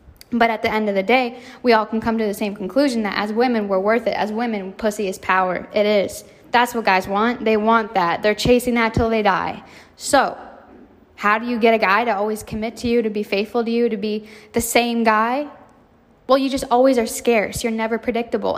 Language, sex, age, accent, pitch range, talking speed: English, female, 10-29, American, 210-235 Hz, 235 wpm